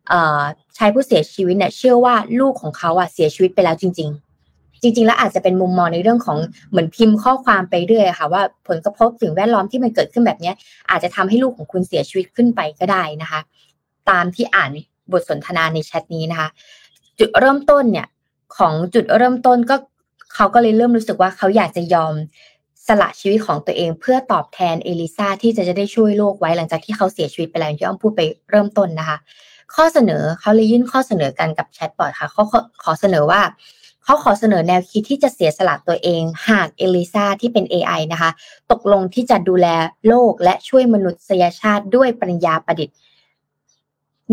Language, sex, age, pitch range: Thai, female, 20-39, 170-235 Hz